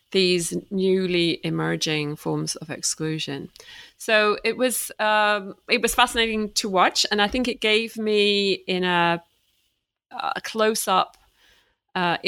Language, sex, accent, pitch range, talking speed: English, female, British, 170-215 Hz, 125 wpm